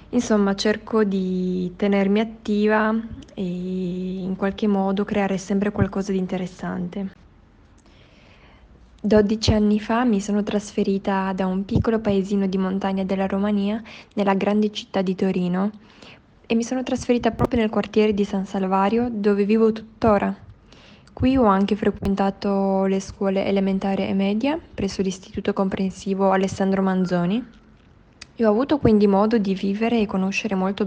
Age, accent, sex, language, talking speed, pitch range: 20-39, native, female, Italian, 135 wpm, 195-215 Hz